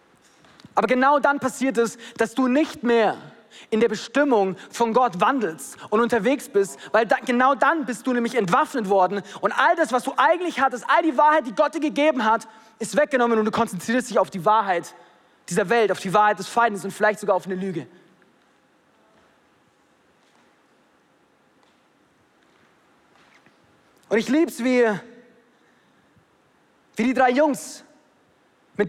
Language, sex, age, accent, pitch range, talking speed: German, male, 30-49, German, 230-305 Hz, 150 wpm